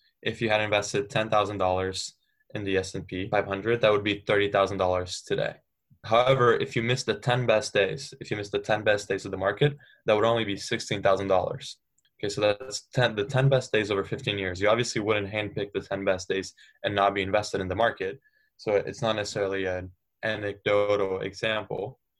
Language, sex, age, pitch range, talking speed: English, male, 10-29, 95-115 Hz, 185 wpm